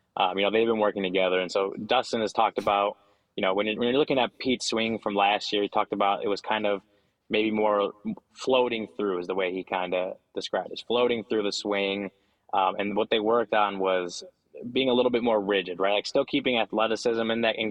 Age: 20-39